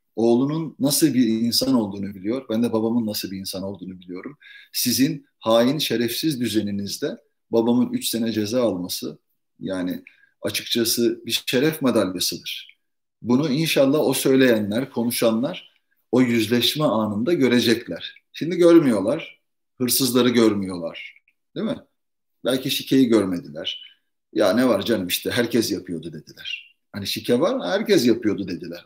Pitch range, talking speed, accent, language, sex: 105-125 Hz, 125 wpm, native, Turkish, male